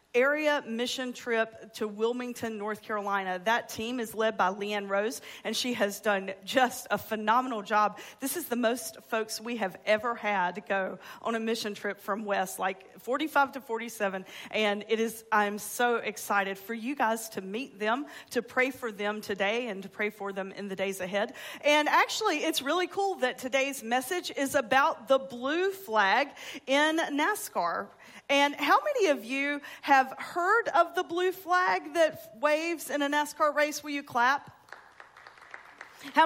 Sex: female